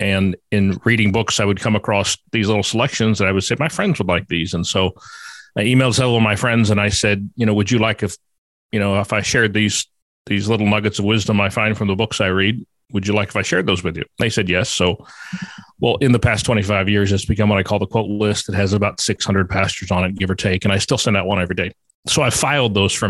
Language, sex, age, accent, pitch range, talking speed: English, male, 40-59, American, 100-115 Hz, 280 wpm